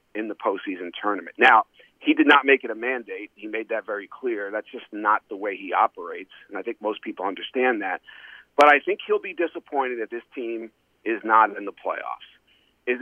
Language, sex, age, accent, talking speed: English, male, 40-59, American, 210 wpm